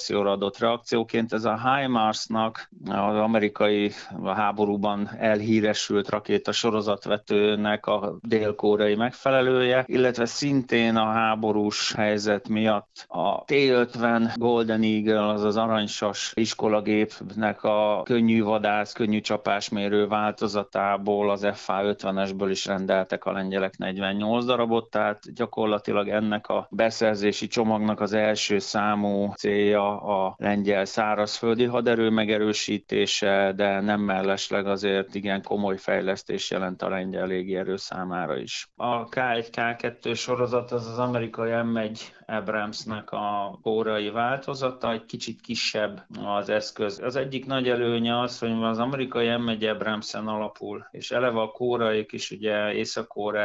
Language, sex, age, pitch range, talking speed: Hungarian, male, 30-49, 100-115 Hz, 120 wpm